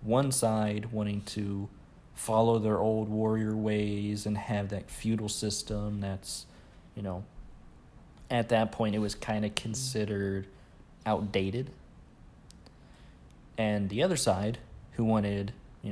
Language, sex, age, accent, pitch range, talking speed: English, male, 30-49, American, 95-110 Hz, 125 wpm